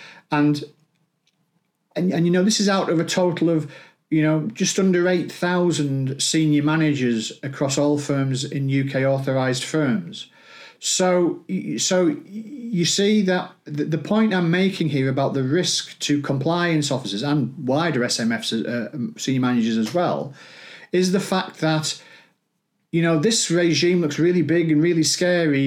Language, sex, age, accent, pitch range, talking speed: English, male, 40-59, British, 140-175 Hz, 150 wpm